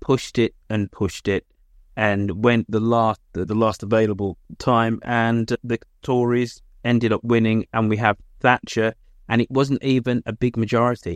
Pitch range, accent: 95-120 Hz, British